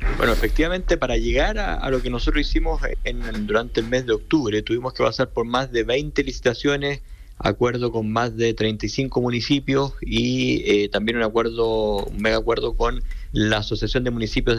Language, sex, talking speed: Spanish, male, 175 wpm